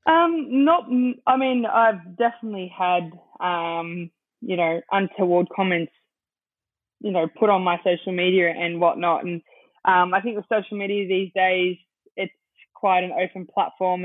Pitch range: 175-200 Hz